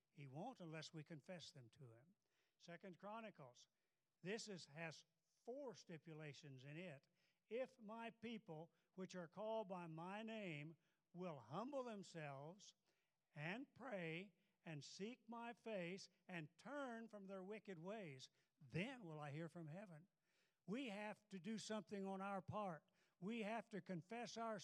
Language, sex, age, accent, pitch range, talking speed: English, male, 60-79, American, 170-220 Hz, 145 wpm